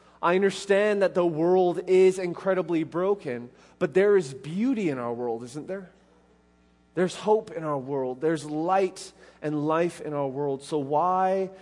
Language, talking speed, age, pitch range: English, 160 wpm, 20-39, 125-155 Hz